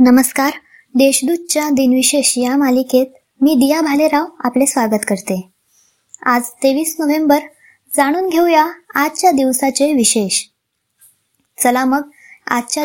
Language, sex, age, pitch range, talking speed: Marathi, male, 20-39, 255-310 Hz, 85 wpm